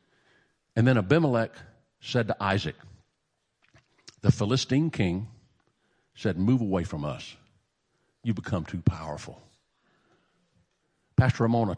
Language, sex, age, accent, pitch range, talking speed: English, male, 50-69, American, 95-125 Hz, 100 wpm